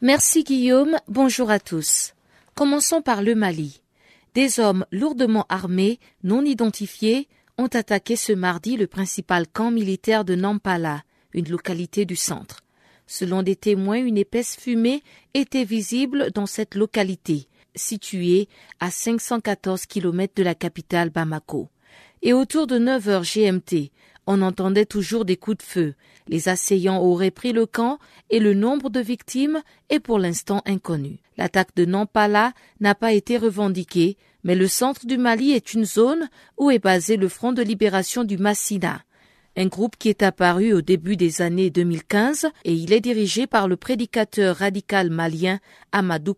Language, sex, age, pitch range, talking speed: French, female, 50-69, 185-235 Hz, 155 wpm